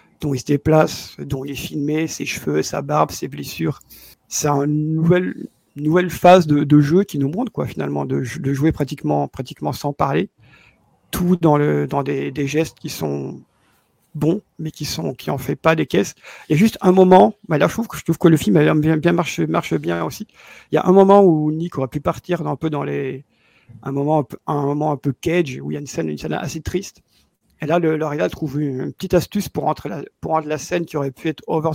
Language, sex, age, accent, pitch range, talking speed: French, male, 50-69, French, 145-170 Hz, 245 wpm